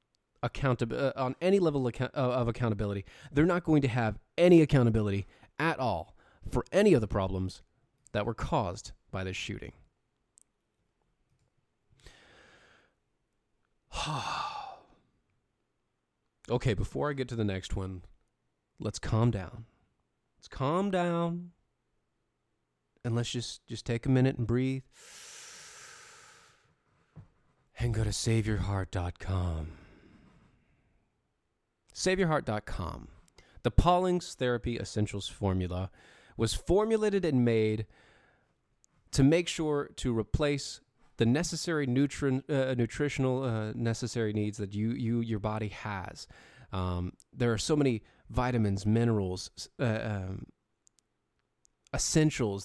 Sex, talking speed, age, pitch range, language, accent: male, 105 wpm, 30-49, 105-135 Hz, English, American